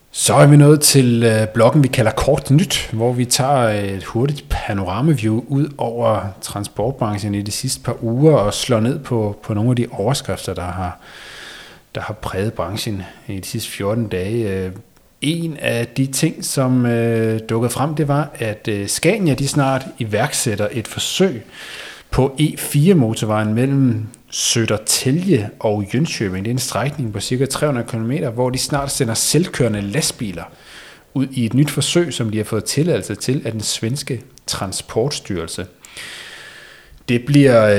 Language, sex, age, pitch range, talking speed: Danish, male, 30-49, 105-135 Hz, 150 wpm